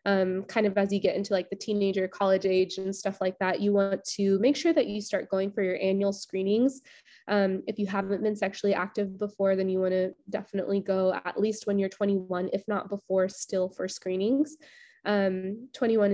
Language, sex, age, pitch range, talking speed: English, female, 20-39, 190-215 Hz, 210 wpm